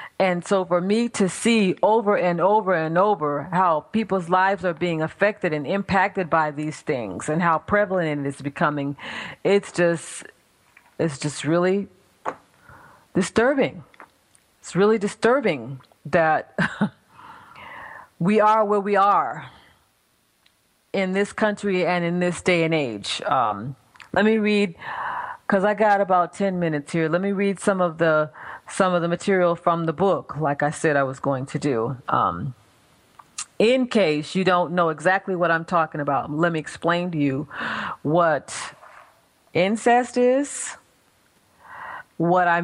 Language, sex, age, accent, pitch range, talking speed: English, female, 40-59, American, 165-200 Hz, 150 wpm